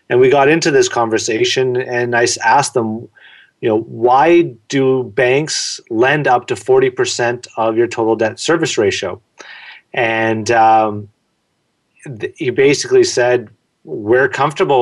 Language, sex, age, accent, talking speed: English, male, 30-49, American, 135 wpm